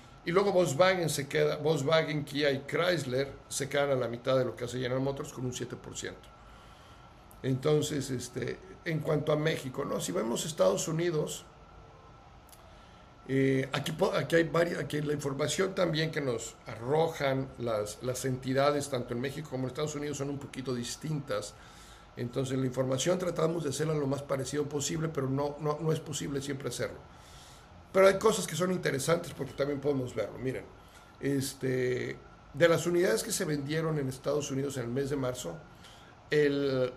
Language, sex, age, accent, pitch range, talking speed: Spanish, male, 50-69, Mexican, 130-150 Hz, 170 wpm